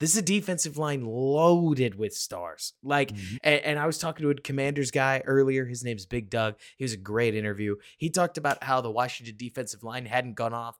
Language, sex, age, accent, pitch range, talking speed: English, male, 20-39, American, 120-160 Hz, 210 wpm